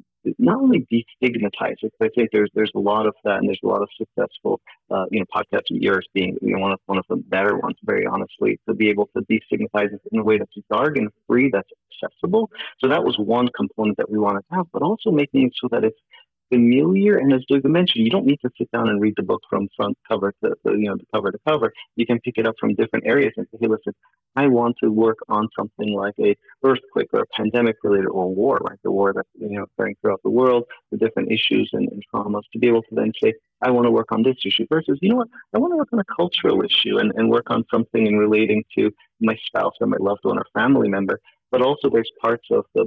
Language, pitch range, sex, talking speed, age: English, 105-155 Hz, male, 250 wpm, 30-49